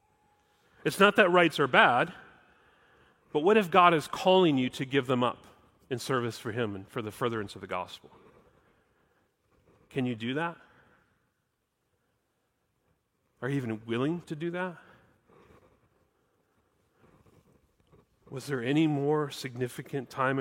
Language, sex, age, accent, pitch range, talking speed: English, male, 40-59, American, 120-170 Hz, 130 wpm